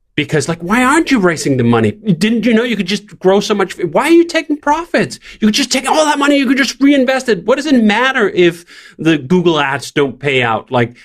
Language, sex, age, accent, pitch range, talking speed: English, male, 30-49, American, 150-225 Hz, 255 wpm